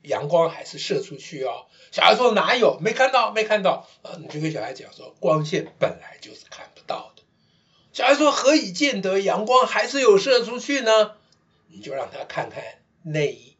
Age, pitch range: 60-79, 155-210 Hz